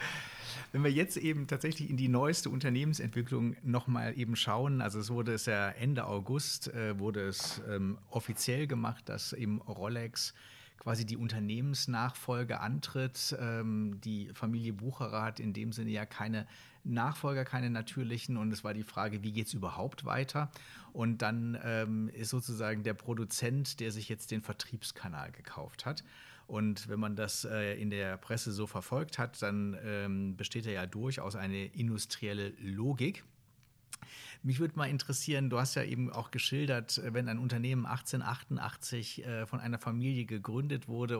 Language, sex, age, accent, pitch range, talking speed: German, male, 40-59, German, 110-130 Hz, 155 wpm